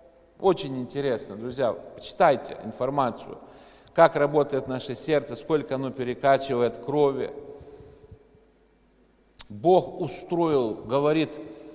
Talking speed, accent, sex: 80 wpm, native, male